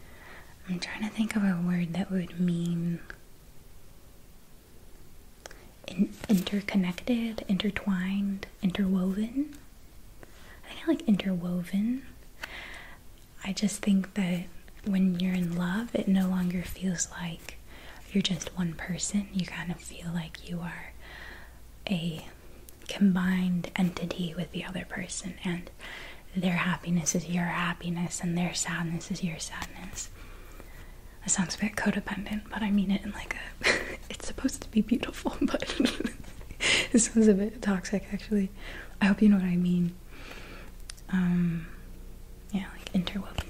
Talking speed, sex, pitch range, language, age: 135 wpm, female, 165-200 Hz, English, 20-39